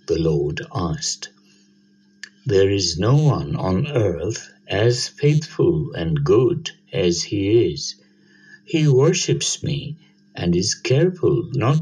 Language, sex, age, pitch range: English, male, 60-79, 100-160 Hz